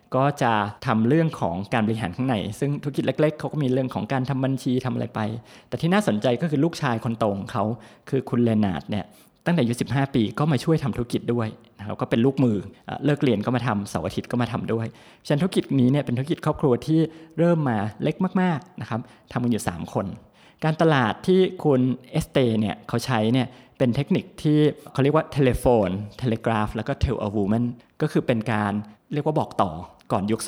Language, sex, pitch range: Thai, male, 115-150 Hz